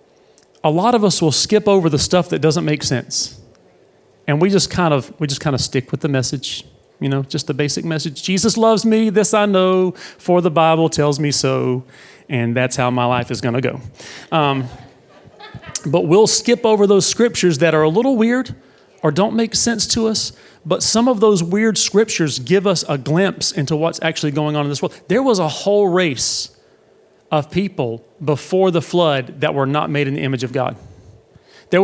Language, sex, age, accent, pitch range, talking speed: English, male, 40-59, American, 135-185 Hz, 205 wpm